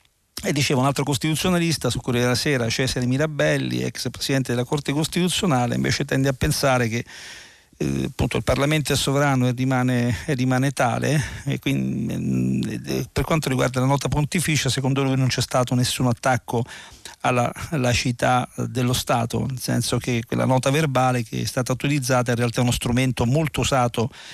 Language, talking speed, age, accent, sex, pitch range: Italian, 170 wpm, 50-69, native, male, 120-140 Hz